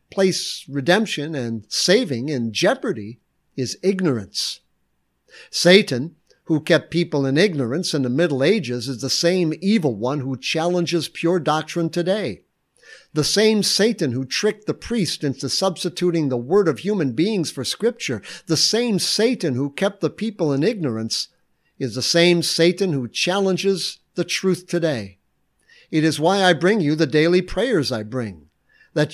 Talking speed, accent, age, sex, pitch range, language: 150 wpm, American, 60-79, male, 135-185 Hz, English